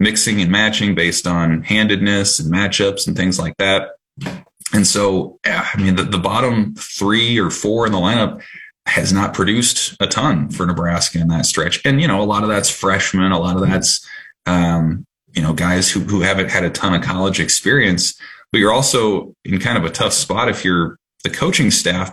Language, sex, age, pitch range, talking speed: English, male, 30-49, 90-100 Hz, 200 wpm